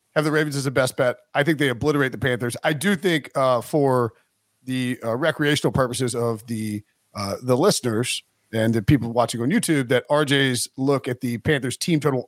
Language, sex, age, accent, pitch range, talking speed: English, male, 40-59, American, 125-160 Hz, 200 wpm